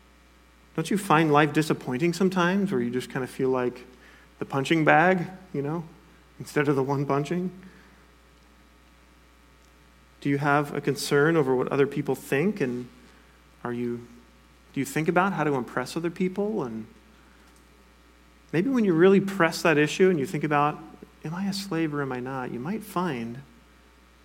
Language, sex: English, male